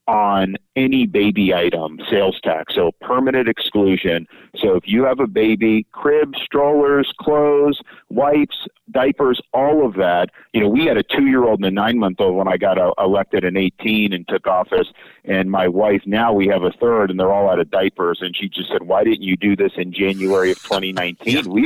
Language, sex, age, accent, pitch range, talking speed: English, male, 50-69, American, 95-125 Hz, 190 wpm